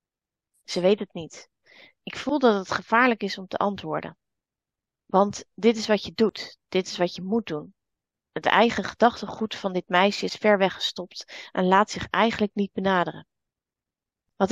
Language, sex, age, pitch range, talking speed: Dutch, female, 30-49, 190-230 Hz, 175 wpm